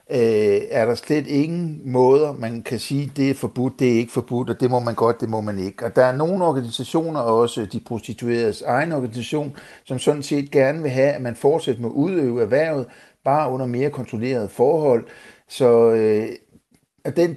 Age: 60-79